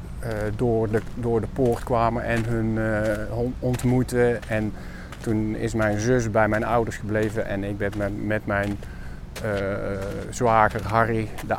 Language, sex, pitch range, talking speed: Dutch, male, 95-125 Hz, 150 wpm